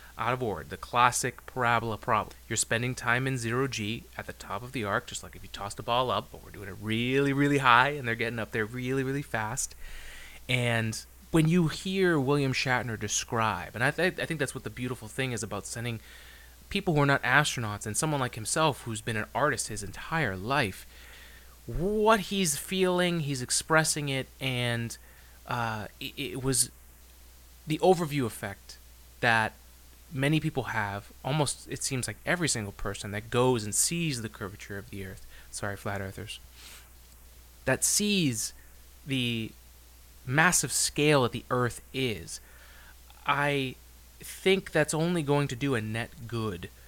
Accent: American